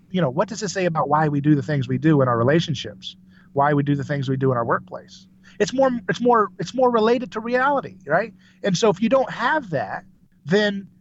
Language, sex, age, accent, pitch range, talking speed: English, male, 30-49, American, 150-190 Hz, 245 wpm